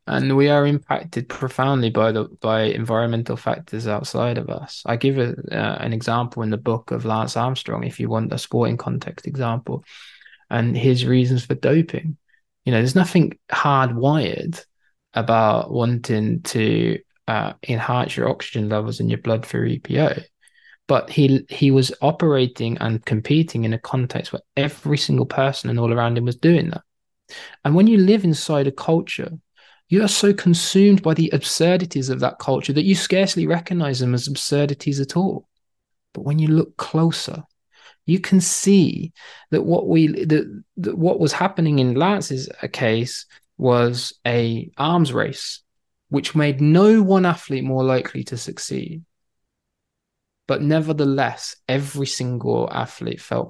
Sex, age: male, 20-39